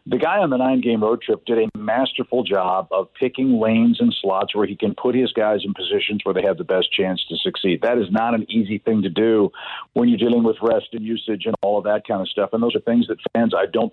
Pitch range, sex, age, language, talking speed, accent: 110-135 Hz, male, 50-69, English, 270 wpm, American